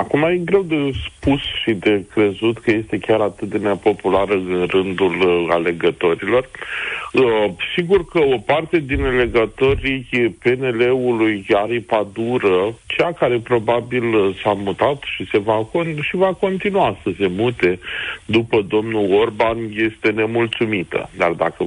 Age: 50-69